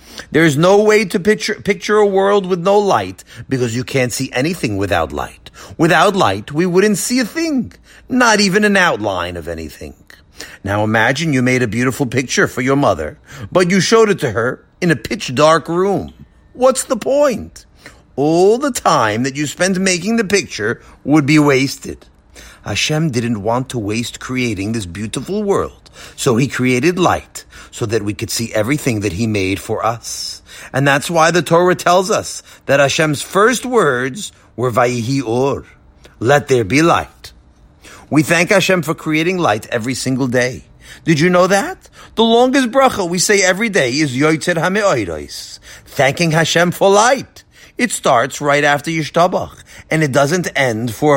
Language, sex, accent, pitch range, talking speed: English, male, American, 120-190 Hz, 170 wpm